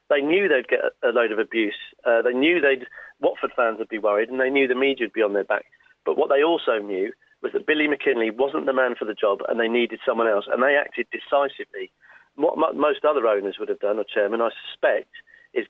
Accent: British